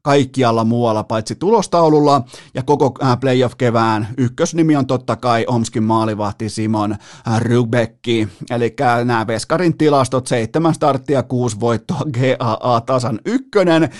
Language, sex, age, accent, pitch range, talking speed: Finnish, male, 30-49, native, 120-150 Hz, 110 wpm